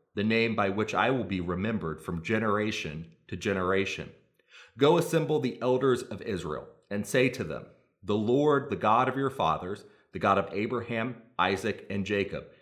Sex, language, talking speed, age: male, English, 170 wpm, 30-49